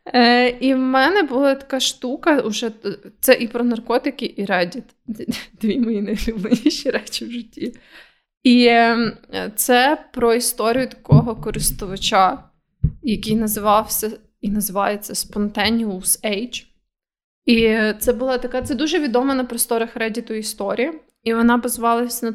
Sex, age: female, 20-39